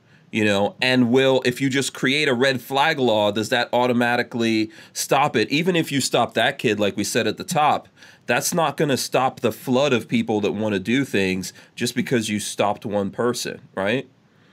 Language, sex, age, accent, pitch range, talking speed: English, male, 30-49, American, 105-130 Hz, 205 wpm